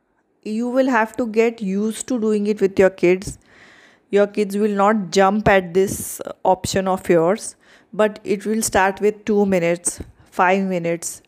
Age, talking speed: 20-39, 165 wpm